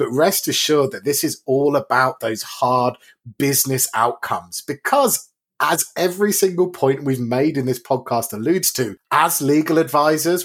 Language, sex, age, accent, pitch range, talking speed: English, male, 30-49, British, 125-150 Hz, 155 wpm